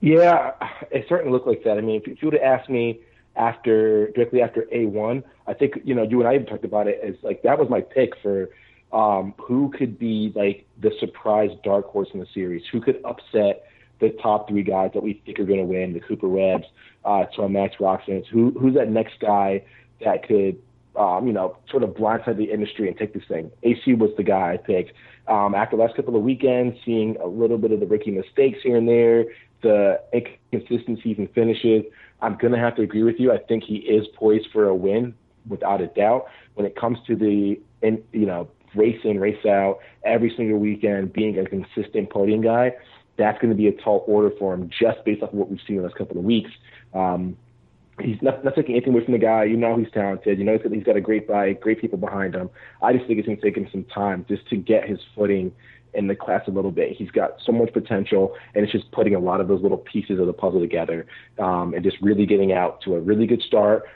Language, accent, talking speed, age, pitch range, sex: English, American, 235 wpm, 30-49, 100-115 Hz, male